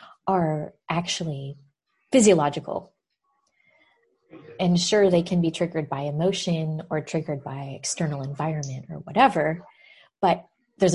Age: 20-39